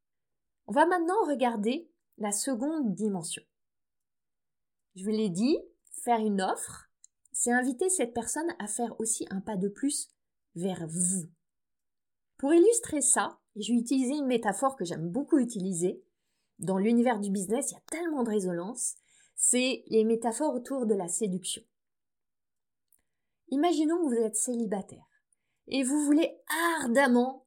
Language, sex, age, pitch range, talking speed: French, female, 20-39, 205-255 Hz, 140 wpm